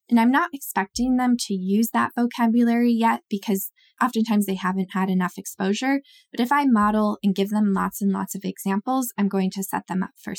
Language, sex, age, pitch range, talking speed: English, female, 10-29, 200-240 Hz, 210 wpm